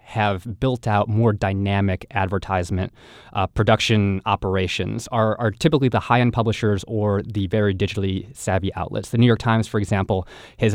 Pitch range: 95-115 Hz